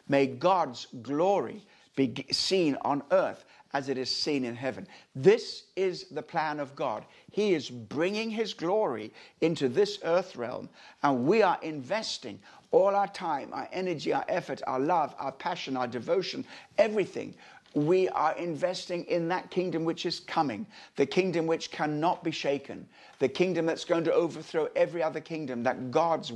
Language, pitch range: English, 130-170 Hz